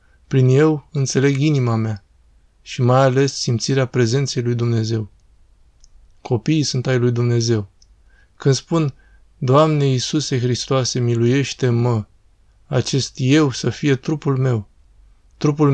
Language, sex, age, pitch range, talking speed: Romanian, male, 20-39, 110-140 Hz, 115 wpm